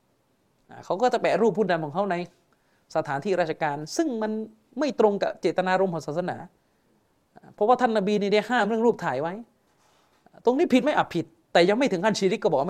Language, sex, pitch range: Thai, male, 155-215 Hz